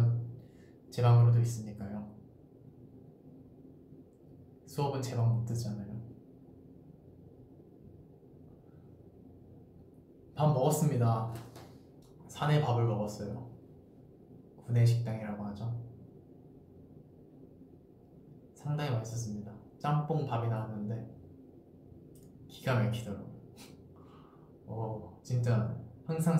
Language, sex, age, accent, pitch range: Korean, male, 20-39, native, 115-135 Hz